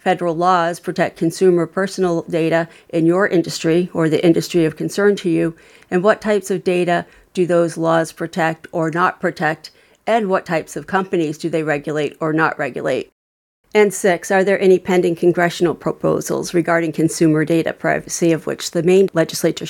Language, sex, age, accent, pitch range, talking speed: English, female, 40-59, American, 165-185 Hz, 170 wpm